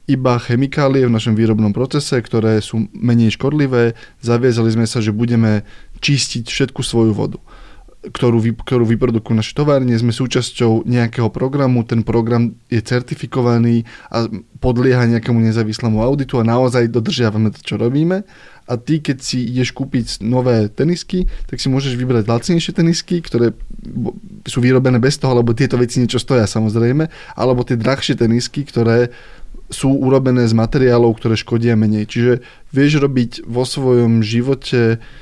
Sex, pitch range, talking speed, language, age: male, 115-135 Hz, 145 wpm, Slovak, 20-39